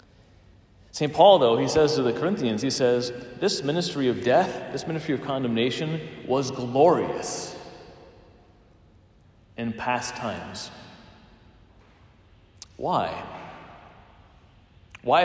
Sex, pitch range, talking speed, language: male, 105-145 Hz, 100 wpm, English